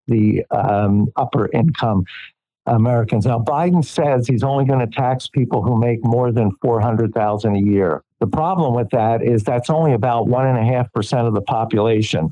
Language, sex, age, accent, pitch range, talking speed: English, male, 60-79, American, 110-130 Hz, 175 wpm